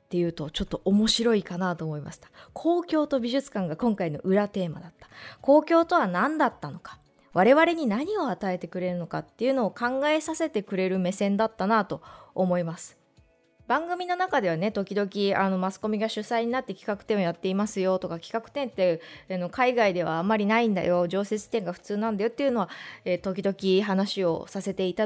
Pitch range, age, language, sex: 175-270 Hz, 20-39, Japanese, female